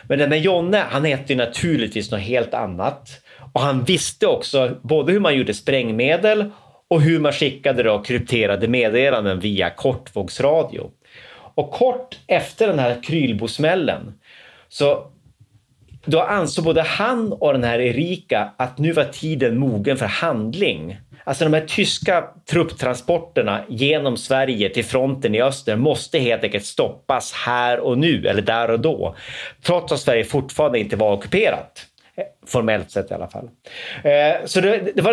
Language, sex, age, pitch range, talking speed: Swedish, male, 30-49, 120-165 Hz, 145 wpm